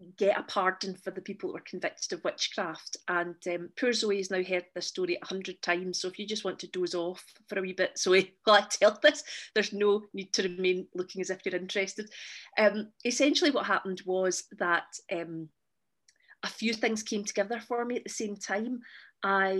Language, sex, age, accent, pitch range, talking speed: English, female, 30-49, British, 185-210 Hz, 210 wpm